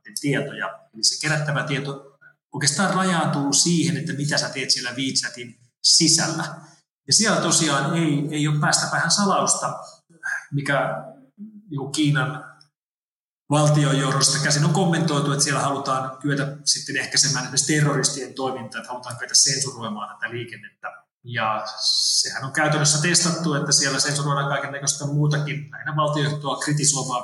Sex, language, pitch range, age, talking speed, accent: male, Finnish, 135-155 Hz, 30-49, 130 wpm, native